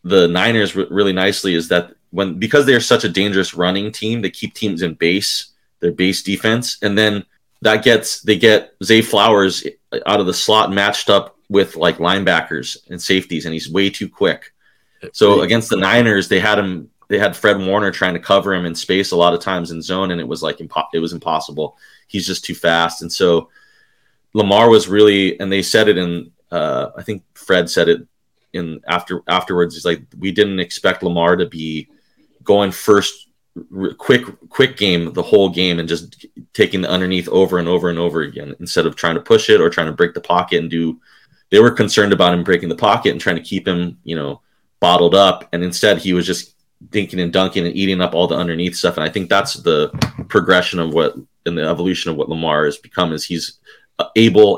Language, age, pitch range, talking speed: English, 30-49, 85-100 Hz, 210 wpm